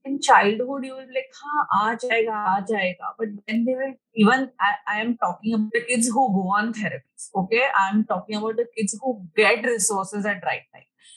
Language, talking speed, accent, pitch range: Hindi, 215 wpm, native, 205-255 Hz